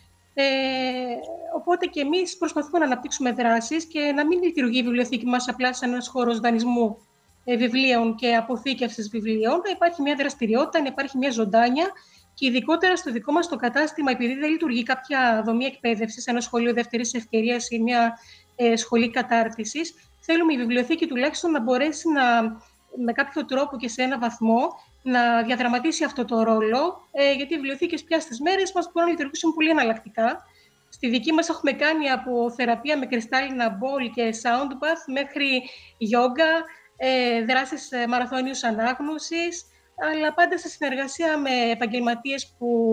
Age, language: 30-49, Greek